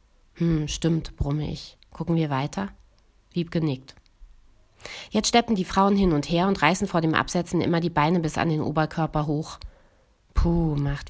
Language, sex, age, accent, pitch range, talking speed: German, female, 30-49, German, 150-175 Hz, 170 wpm